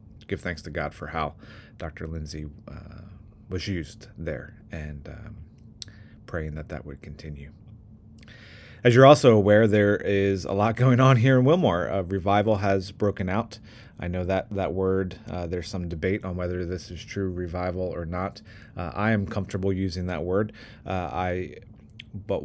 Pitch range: 85-105 Hz